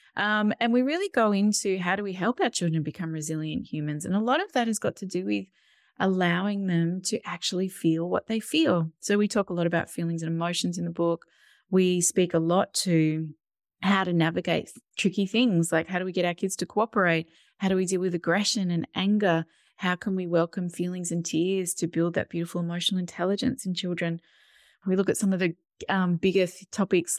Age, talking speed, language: 20-39, 215 wpm, English